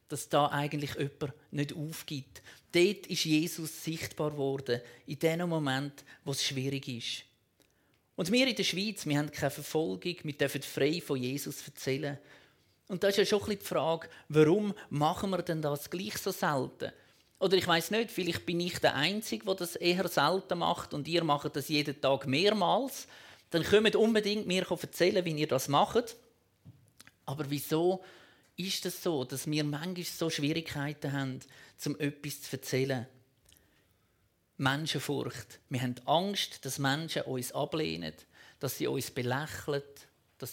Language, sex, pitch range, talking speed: German, male, 135-175 Hz, 160 wpm